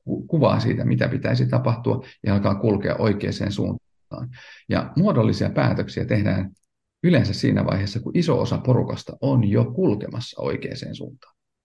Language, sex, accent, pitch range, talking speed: Finnish, male, native, 100-125 Hz, 135 wpm